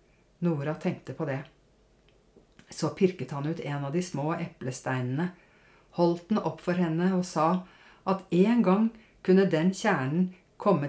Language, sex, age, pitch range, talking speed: Danish, female, 60-79, 160-210 Hz, 150 wpm